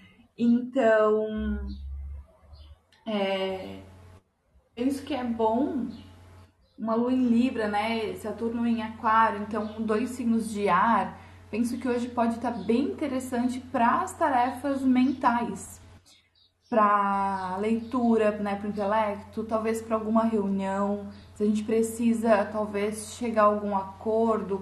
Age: 20-39